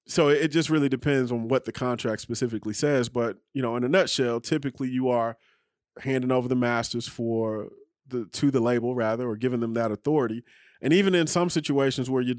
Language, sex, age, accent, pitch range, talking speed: English, male, 30-49, American, 115-130 Hz, 205 wpm